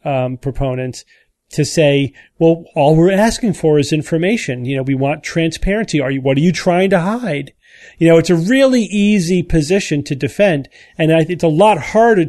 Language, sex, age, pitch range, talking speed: English, male, 40-59, 140-180 Hz, 190 wpm